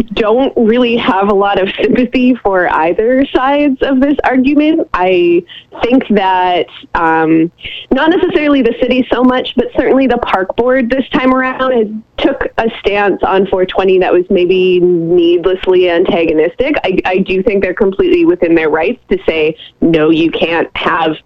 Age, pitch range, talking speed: 20-39, 180-265 Hz, 160 wpm